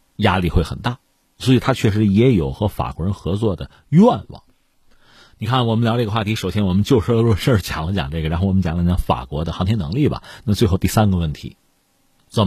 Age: 50-69